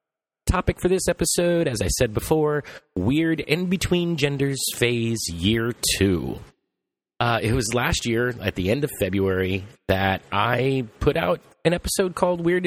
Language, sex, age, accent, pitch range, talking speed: English, male, 30-49, American, 100-150 Hz, 145 wpm